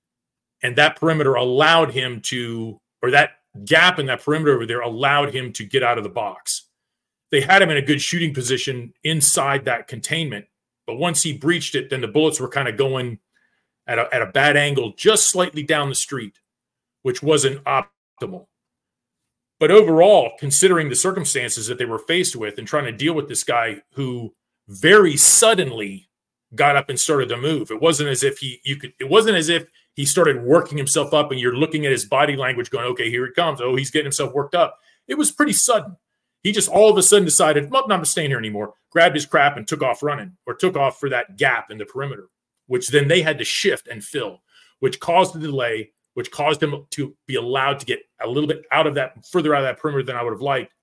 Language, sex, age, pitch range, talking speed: English, male, 40-59, 125-165 Hz, 220 wpm